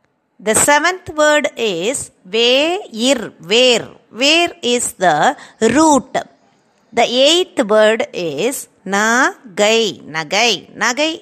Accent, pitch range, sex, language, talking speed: native, 225-300 Hz, female, Tamil, 90 wpm